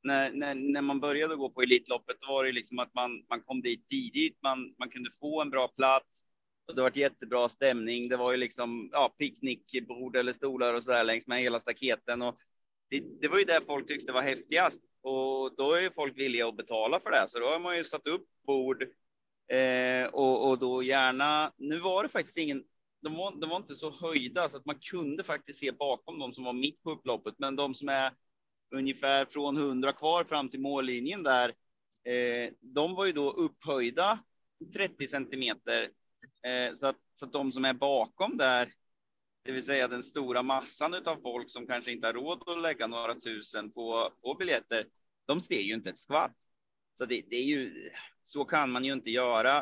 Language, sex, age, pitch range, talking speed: Swedish, male, 30-49, 125-145 Hz, 205 wpm